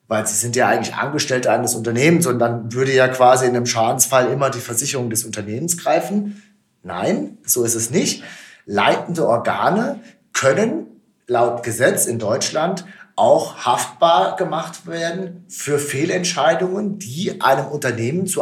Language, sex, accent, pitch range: German, male, German, 125-165 Hz